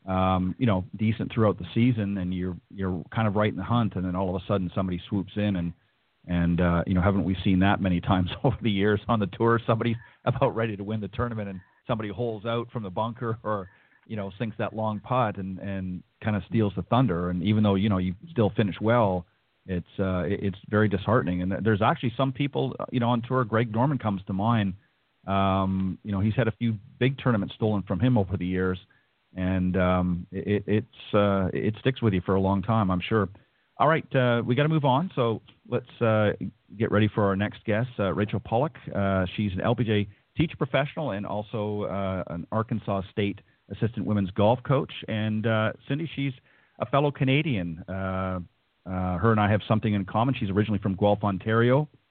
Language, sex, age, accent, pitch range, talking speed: English, male, 40-59, American, 95-115 Hz, 215 wpm